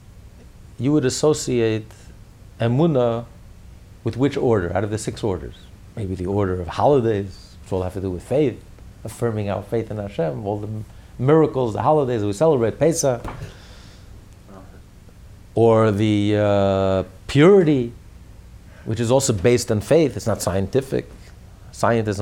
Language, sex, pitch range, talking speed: English, male, 100-135 Hz, 140 wpm